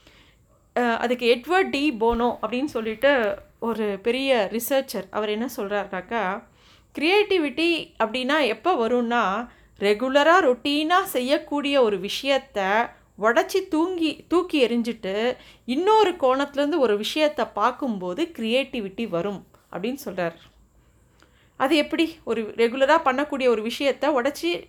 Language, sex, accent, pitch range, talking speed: Tamil, female, native, 230-300 Hz, 100 wpm